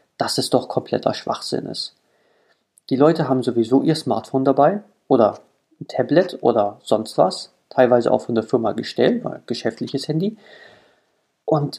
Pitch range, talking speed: 125-155 Hz, 150 wpm